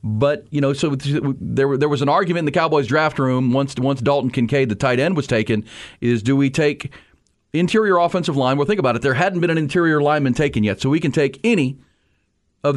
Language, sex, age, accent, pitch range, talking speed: English, male, 40-59, American, 125-150 Hz, 225 wpm